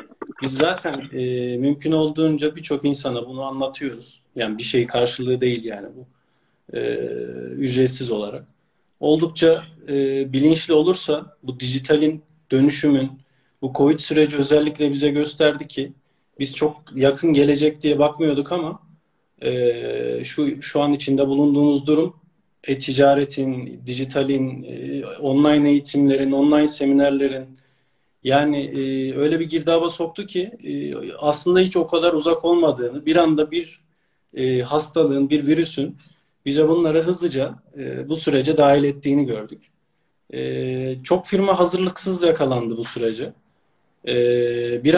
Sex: male